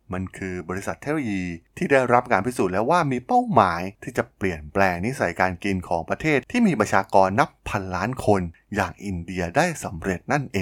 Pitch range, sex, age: 90-115 Hz, male, 20-39